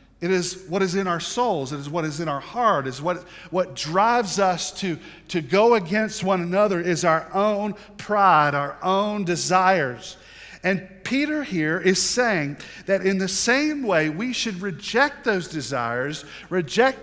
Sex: male